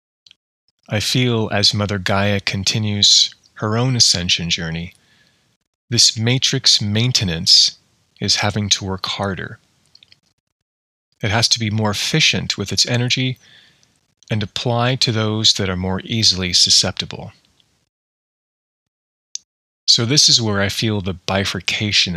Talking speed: 120 wpm